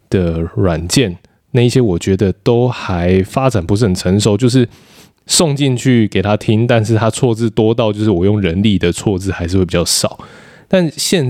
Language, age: Chinese, 20-39